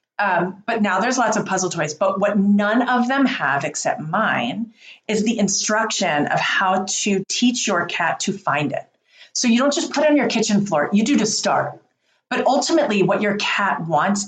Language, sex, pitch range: English, female, 190-235 Hz